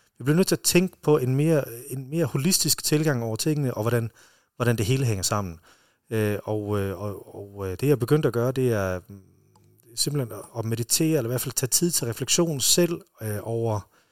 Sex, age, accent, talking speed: male, 30-49, native, 190 wpm